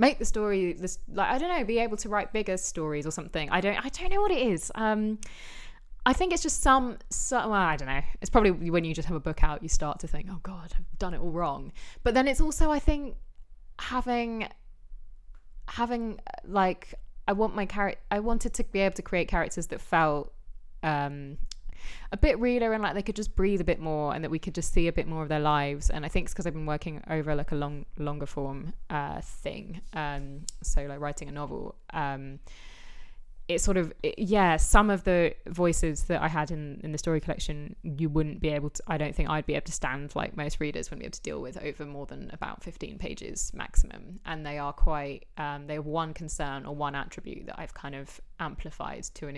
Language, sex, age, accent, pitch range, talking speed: English, female, 10-29, British, 150-200 Hz, 230 wpm